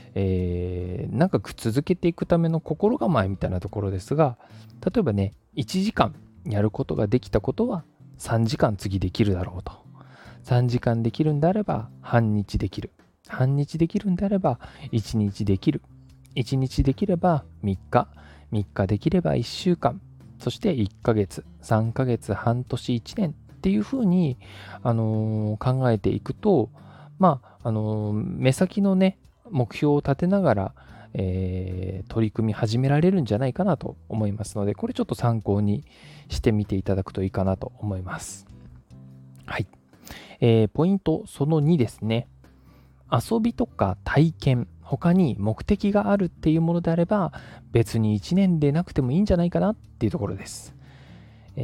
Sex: male